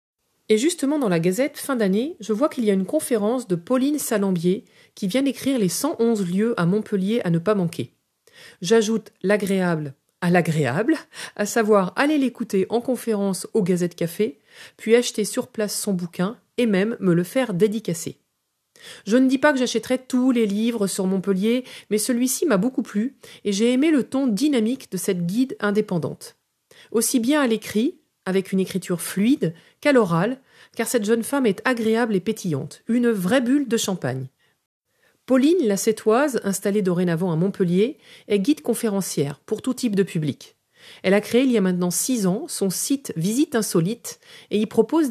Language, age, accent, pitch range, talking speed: French, 40-59, French, 190-250 Hz, 180 wpm